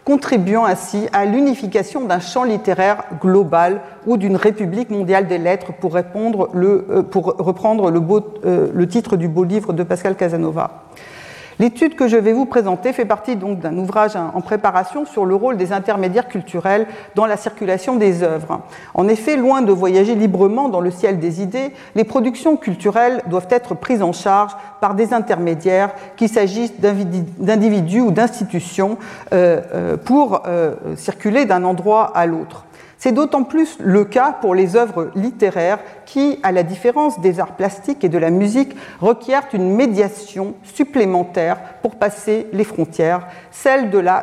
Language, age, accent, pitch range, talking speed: French, 50-69, French, 180-225 Hz, 160 wpm